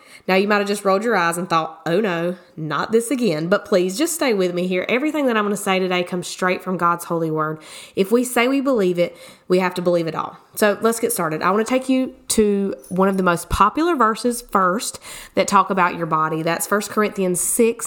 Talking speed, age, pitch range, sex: 245 wpm, 20-39, 175-230 Hz, female